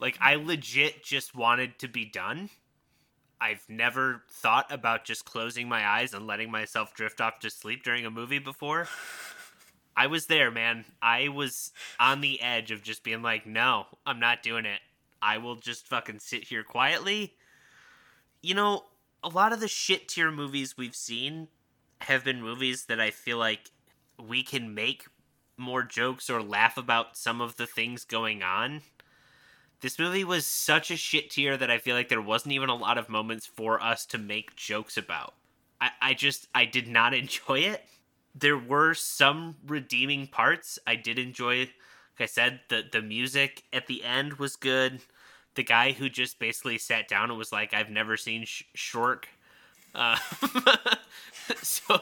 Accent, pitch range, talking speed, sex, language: American, 115-145 Hz, 175 wpm, male, English